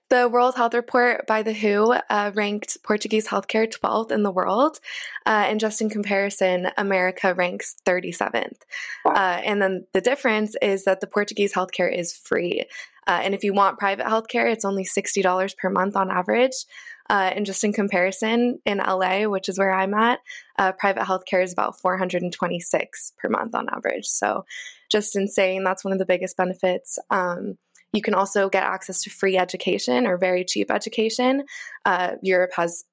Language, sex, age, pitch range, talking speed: English, female, 20-39, 185-220 Hz, 175 wpm